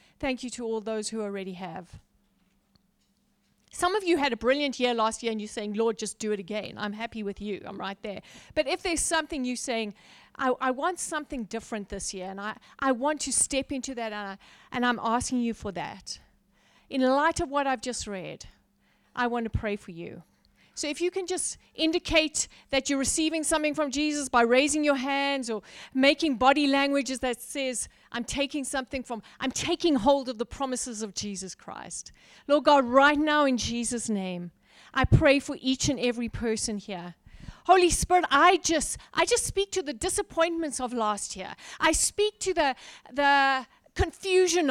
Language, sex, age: English, female, 40-59